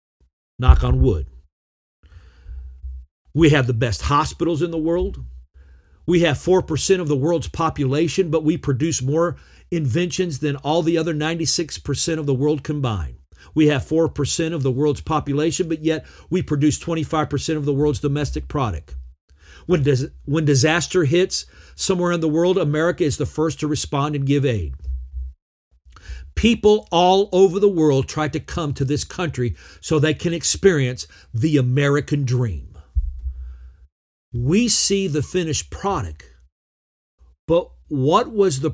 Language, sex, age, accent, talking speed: English, male, 50-69, American, 140 wpm